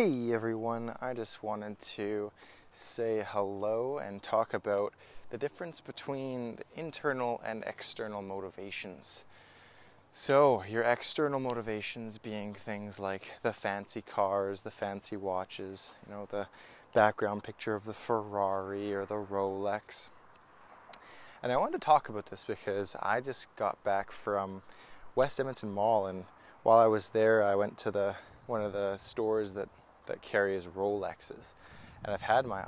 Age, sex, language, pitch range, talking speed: 20-39, male, English, 95-110 Hz, 145 wpm